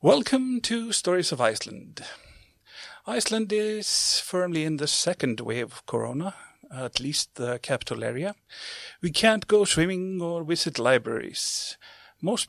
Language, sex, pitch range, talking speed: English, male, 145-205 Hz, 130 wpm